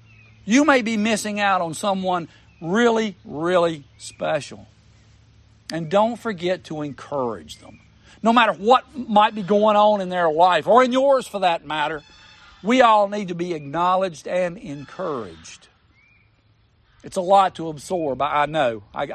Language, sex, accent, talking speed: English, male, American, 150 wpm